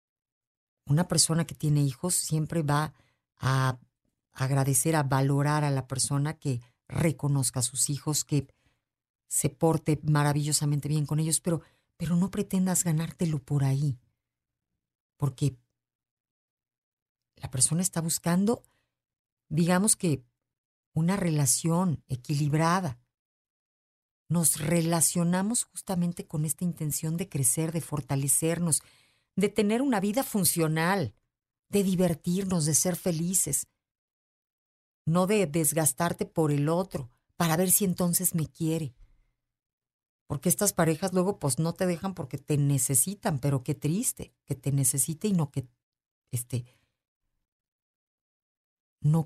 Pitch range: 140-180 Hz